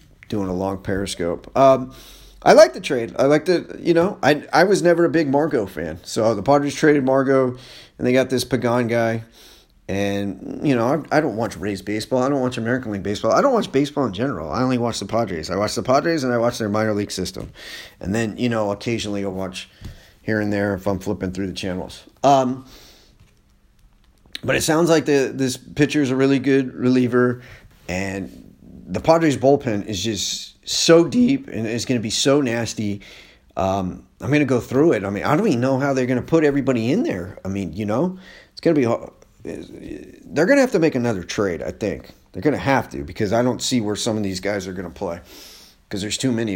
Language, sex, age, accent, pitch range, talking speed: English, male, 30-49, American, 100-145 Hz, 225 wpm